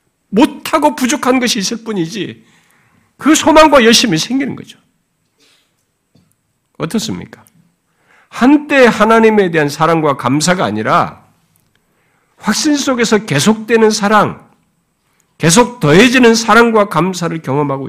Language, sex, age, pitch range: Korean, male, 50-69, 145-220 Hz